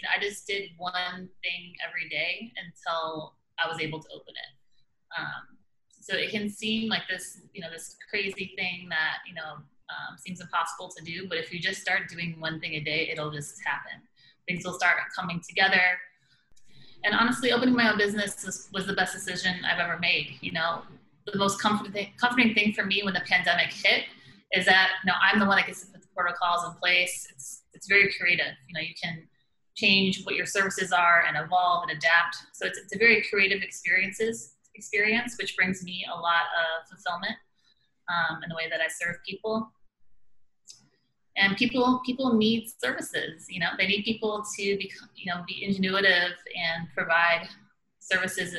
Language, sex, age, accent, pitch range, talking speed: English, female, 20-39, American, 170-205 Hz, 190 wpm